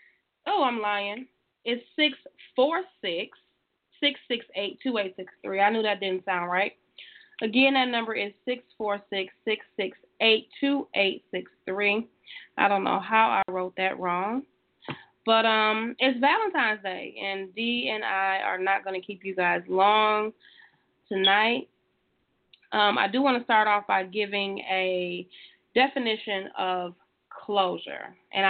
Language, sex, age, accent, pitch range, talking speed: English, female, 20-39, American, 190-240 Hz, 120 wpm